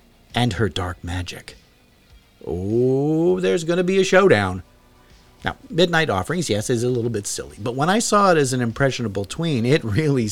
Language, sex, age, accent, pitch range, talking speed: English, male, 50-69, American, 100-155 Hz, 180 wpm